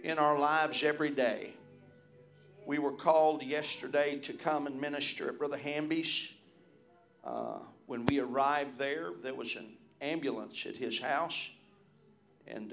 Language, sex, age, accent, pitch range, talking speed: English, male, 50-69, American, 125-155 Hz, 135 wpm